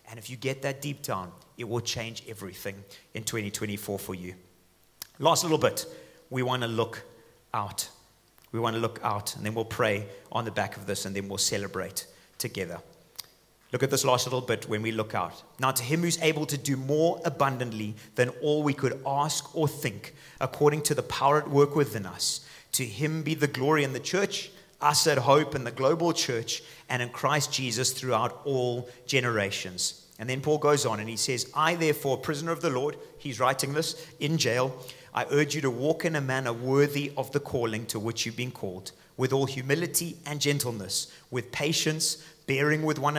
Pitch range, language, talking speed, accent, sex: 115-150 Hz, English, 200 wpm, British, male